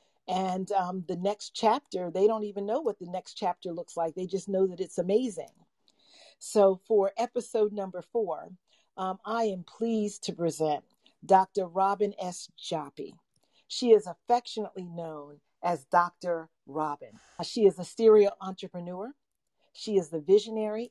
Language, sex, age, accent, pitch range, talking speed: English, female, 40-59, American, 180-220 Hz, 150 wpm